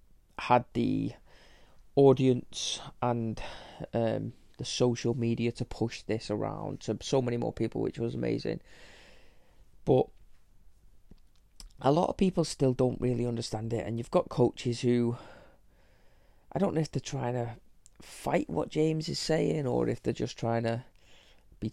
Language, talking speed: English, 150 wpm